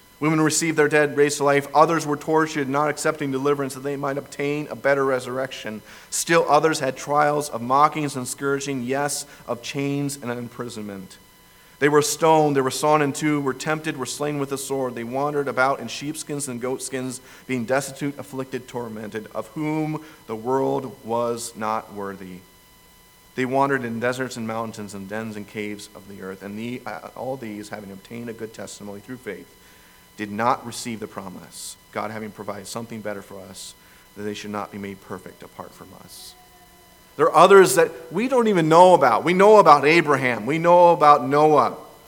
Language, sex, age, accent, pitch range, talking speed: English, male, 40-59, American, 110-155 Hz, 185 wpm